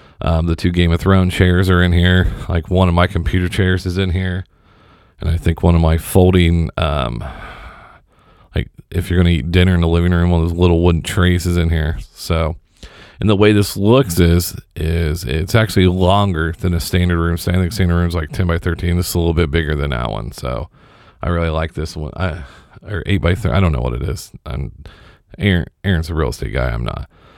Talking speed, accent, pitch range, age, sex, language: 230 wpm, American, 80-95 Hz, 40-59, male, English